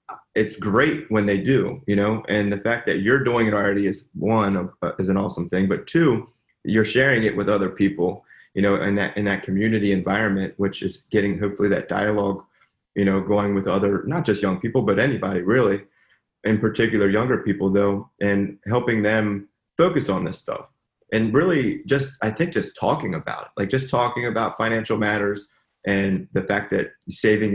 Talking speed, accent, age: 190 wpm, American, 30-49